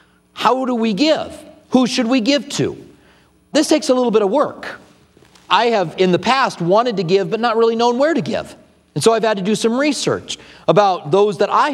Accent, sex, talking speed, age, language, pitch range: American, male, 220 wpm, 40-59, English, 165-215 Hz